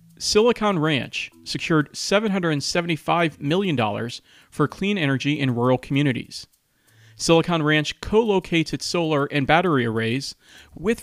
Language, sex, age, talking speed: English, male, 40-59, 115 wpm